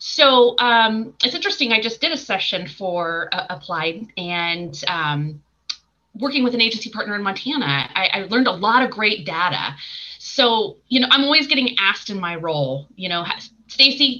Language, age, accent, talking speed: English, 30-49, American, 180 wpm